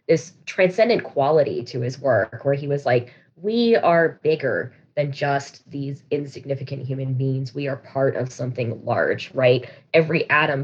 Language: English